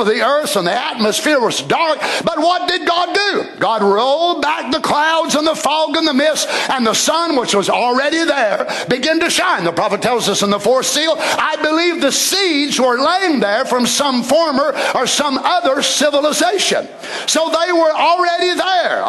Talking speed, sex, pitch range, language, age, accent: 190 wpm, male, 260-335 Hz, English, 60-79, American